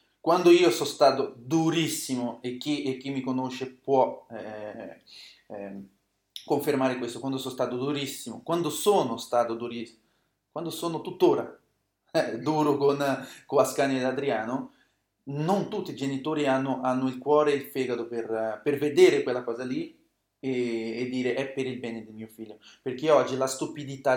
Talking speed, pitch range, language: 160 wpm, 125-150 Hz, Italian